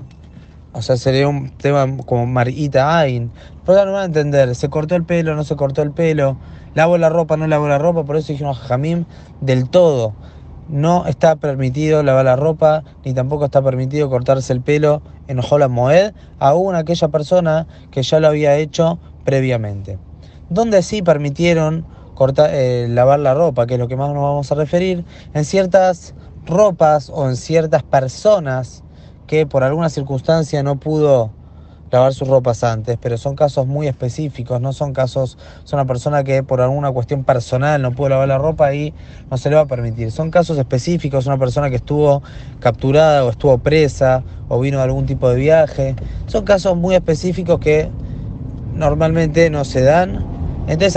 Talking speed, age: 180 wpm, 20-39